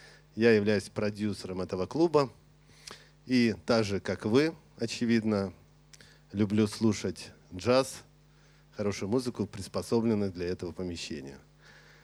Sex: male